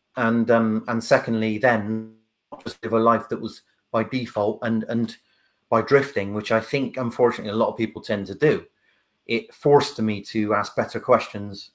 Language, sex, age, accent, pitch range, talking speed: English, male, 30-49, British, 110-120 Hz, 180 wpm